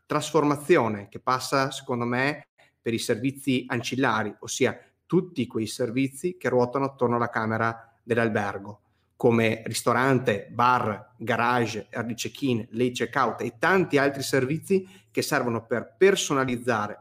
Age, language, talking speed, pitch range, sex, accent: 30-49, Italian, 125 wpm, 115-140 Hz, male, native